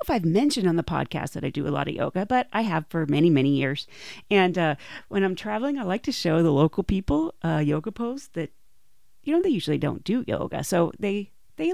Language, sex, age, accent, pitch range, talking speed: English, female, 40-59, American, 155-200 Hz, 235 wpm